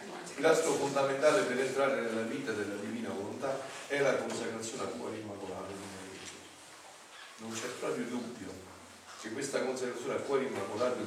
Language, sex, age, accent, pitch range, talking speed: Italian, male, 40-59, native, 100-135 Hz, 150 wpm